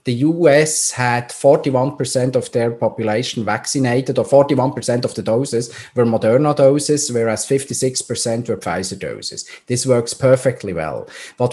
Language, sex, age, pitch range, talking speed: English, male, 30-49, 115-140 Hz, 135 wpm